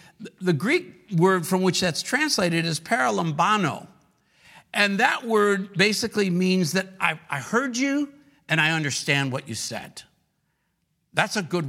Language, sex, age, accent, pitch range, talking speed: English, male, 50-69, American, 150-210 Hz, 145 wpm